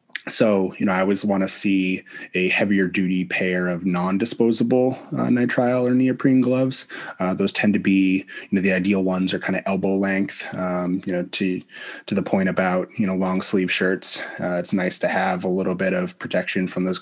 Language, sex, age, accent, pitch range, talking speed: English, male, 20-39, American, 95-100 Hz, 210 wpm